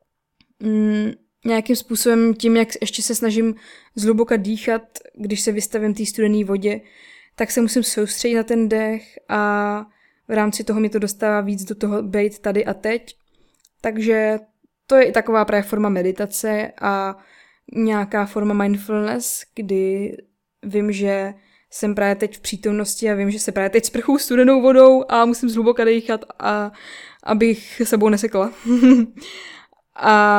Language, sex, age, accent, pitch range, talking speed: Czech, female, 20-39, native, 210-235 Hz, 150 wpm